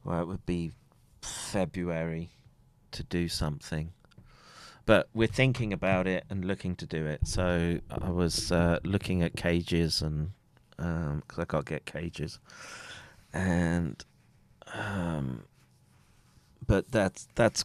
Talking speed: 125 wpm